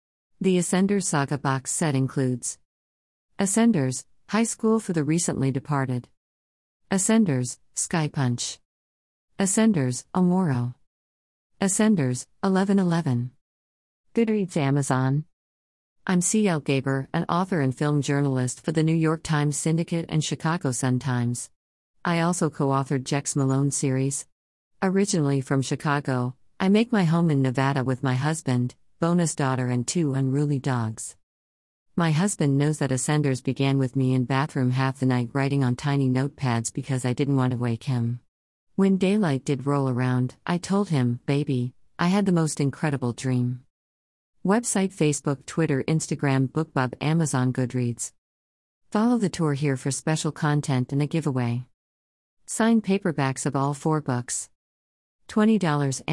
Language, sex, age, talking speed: English, female, 50-69, 135 wpm